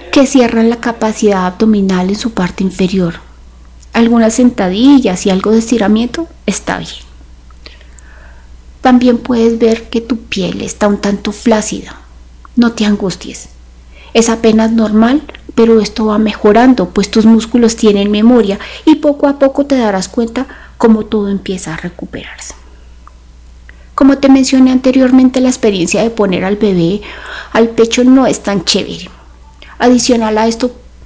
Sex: female